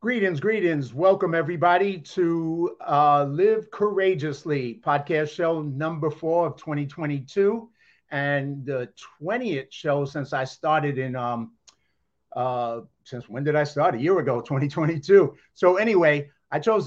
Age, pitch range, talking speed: 50-69, 130-155 Hz, 130 wpm